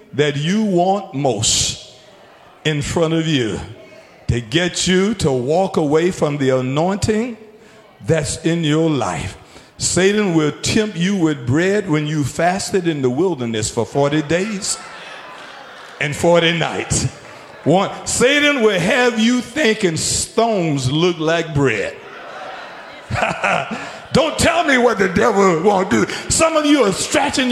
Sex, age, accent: male, 50-69, American